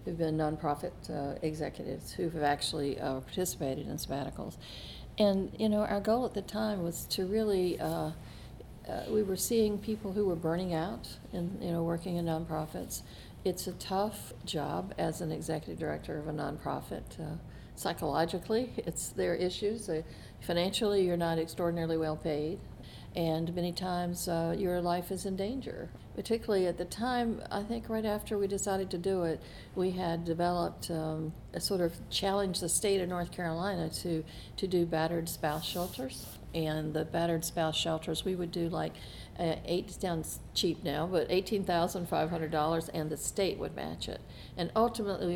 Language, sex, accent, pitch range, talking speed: English, female, American, 160-195 Hz, 165 wpm